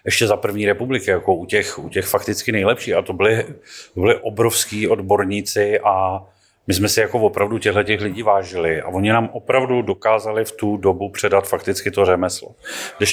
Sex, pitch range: male, 95-115 Hz